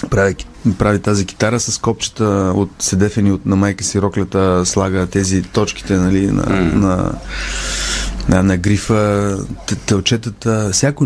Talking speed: 130 wpm